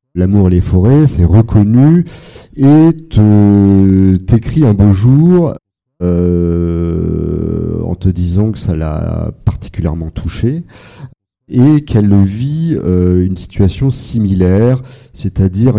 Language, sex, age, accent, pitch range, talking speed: French, male, 40-59, French, 90-120 Hz, 105 wpm